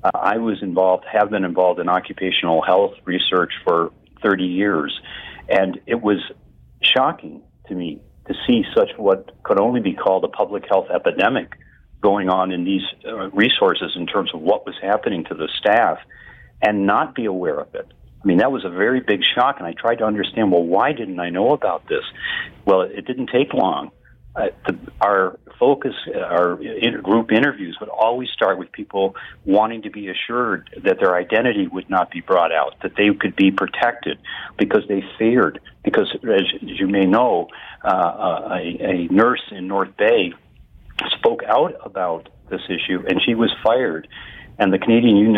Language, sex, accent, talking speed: English, male, American, 180 wpm